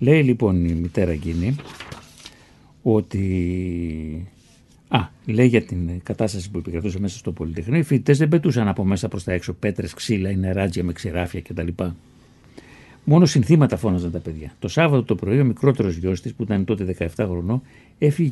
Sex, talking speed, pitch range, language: male, 160 wpm, 90-135 Hz, Greek